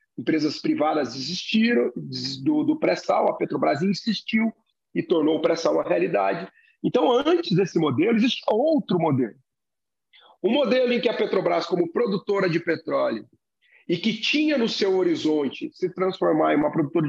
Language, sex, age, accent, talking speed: Portuguese, male, 40-59, Brazilian, 150 wpm